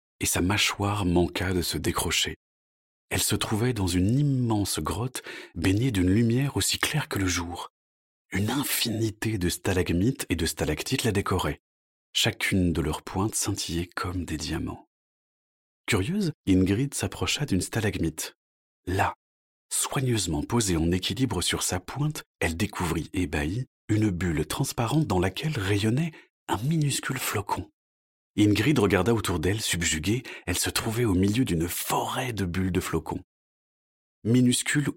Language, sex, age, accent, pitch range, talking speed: French, male, 40-59, French, 85-125 Hz, 140 wpm